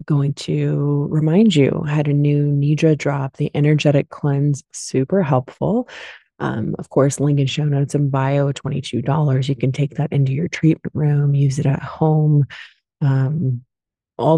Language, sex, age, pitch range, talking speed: English, female, 20-39, 130-160 Hz, 170 wpm